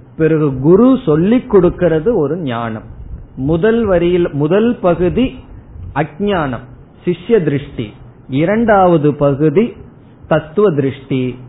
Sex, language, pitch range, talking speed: male, Tamil, 130-175 Hz, 90 wpm